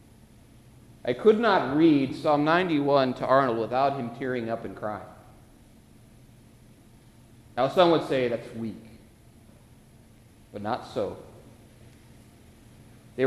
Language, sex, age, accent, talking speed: English, male, 50-69, American, 110 wpm